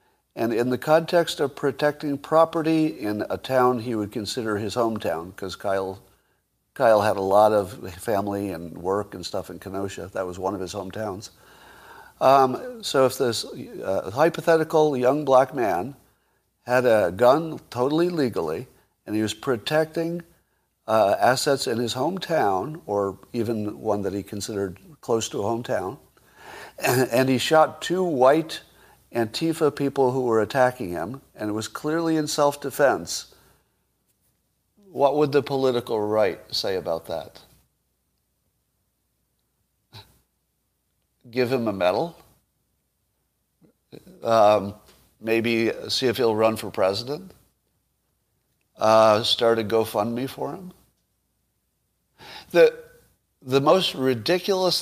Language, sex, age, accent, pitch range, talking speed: English, male, 50-69, American, 105-150 Hz, 125 wpm